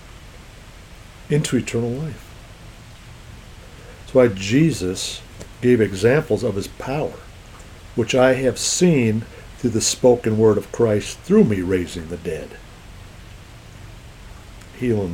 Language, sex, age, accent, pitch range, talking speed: English, male, 60-79, American, 95-120 Hz, 105 wpm